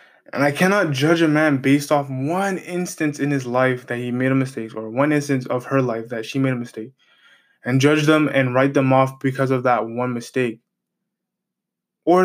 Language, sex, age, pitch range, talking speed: English, male, 20-39, 130-155 Hz, 205 wpm